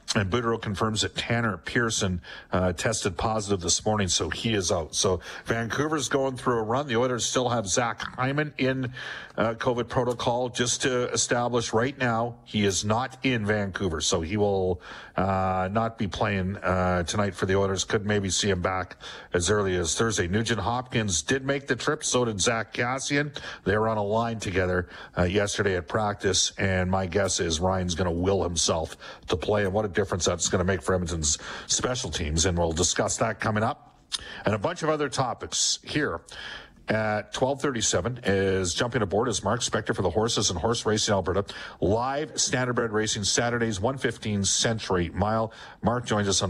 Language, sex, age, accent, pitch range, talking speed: English, male, 50-69, American, 95-120 Hz, 190 wpm